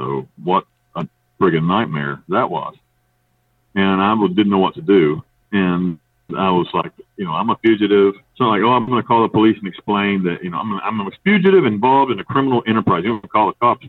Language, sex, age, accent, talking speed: English, male, 50-69, American, 235 wpm